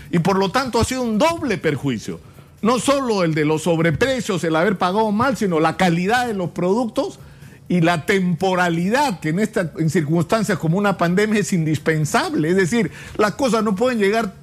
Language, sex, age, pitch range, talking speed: Spanish, male, 50-69, 155-215 Hz, 185 wpm